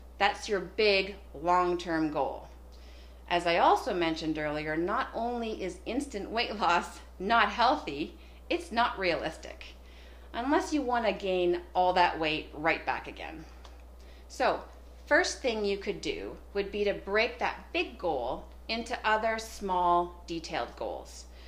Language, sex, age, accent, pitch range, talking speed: English, female, 40-59, American, 160-220 Hz, 135 wpm